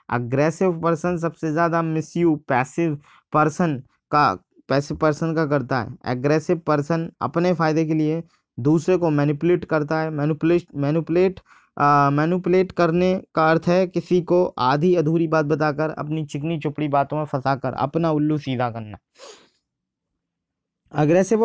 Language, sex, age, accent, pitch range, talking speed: Hindi, male, 20-39, native, 145-170 Hz, 135 wpm